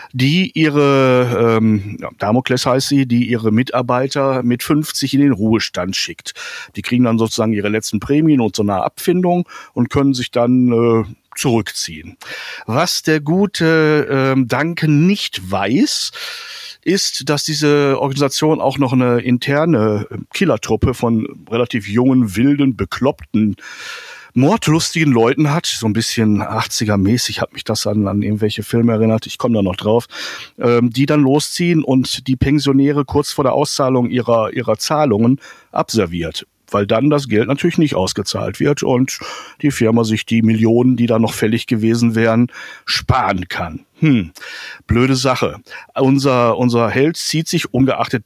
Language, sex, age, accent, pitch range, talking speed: German, male, 60-79, German, 115-145 Hz, 150 wpm